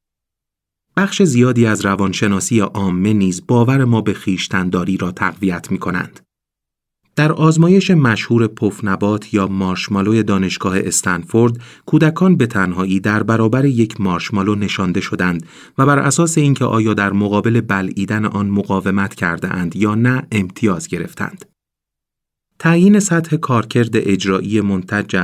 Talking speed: 120 wpm